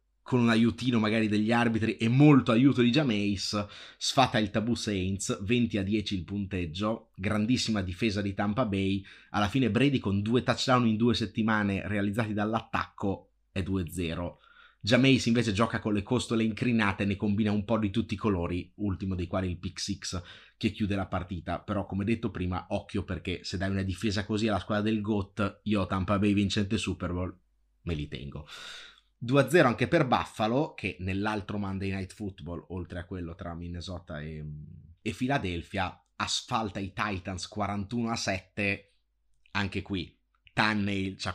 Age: 30-49